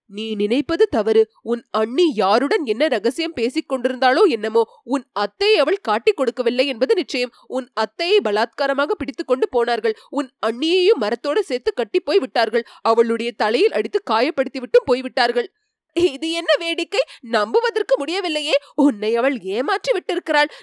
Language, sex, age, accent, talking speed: Tamil, female, 30-49, native, 130 wpm